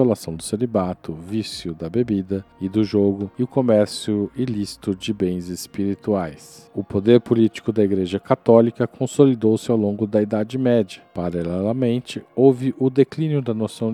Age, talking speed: 50-69, 140 wpm